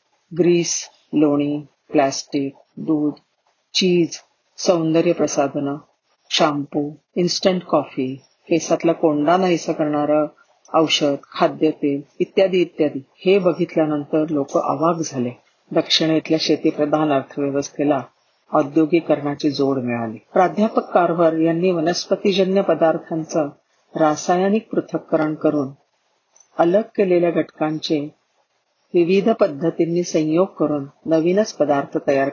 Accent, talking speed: native, 70 wpm